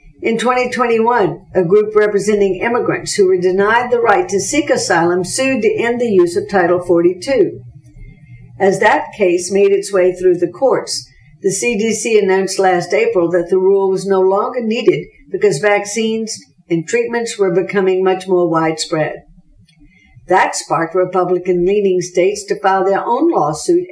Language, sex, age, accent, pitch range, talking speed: English, female, 60-79, American, 175-215 Hz, 155 wpm